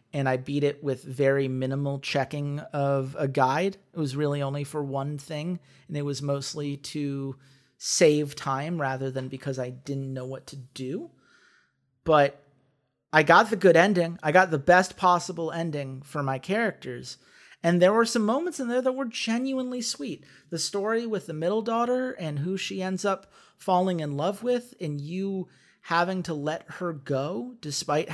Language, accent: English, American